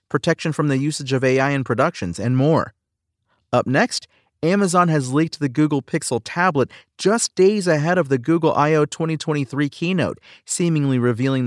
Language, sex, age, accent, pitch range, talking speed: English, male, 40-59, American, 120-150 Hz, 155 wpm